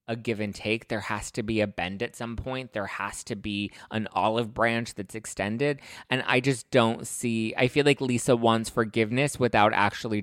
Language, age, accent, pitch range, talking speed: English, 20-39, American, 100-120 Hz, 205 wpm